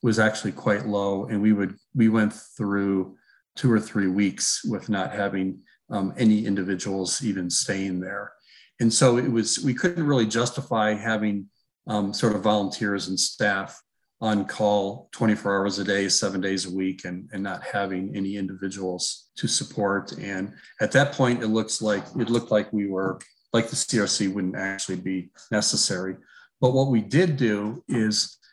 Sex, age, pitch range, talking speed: male, 40-59, 100-115 Hz, 170 wpm